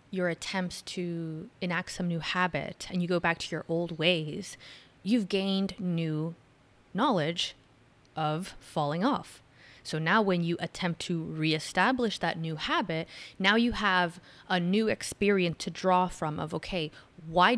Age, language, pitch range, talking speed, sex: 20-39, English, 165-220 Hz, 150 wpm, female